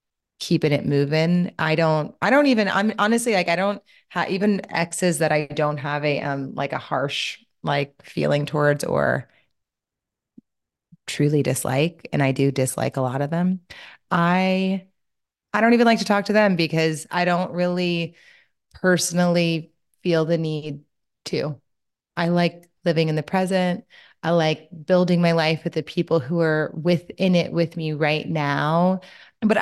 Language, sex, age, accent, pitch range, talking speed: English, female, 30-49, American, 150-185 Hz, 160 wpm